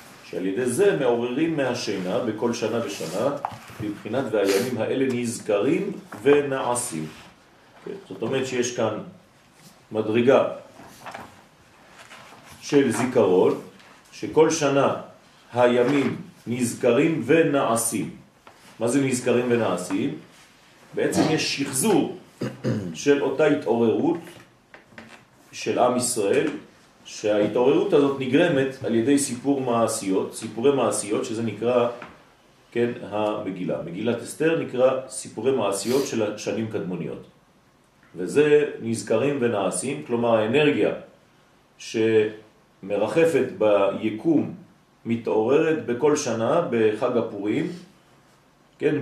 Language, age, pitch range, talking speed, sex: French, 40-59, 115-145 Hz, 80 wpm, male